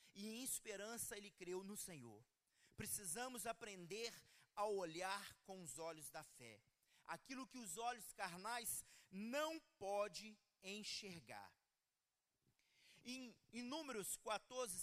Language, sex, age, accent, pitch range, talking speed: Portuguese, male, 40-59, Brazilian, 180-240 Hz, 115 wpm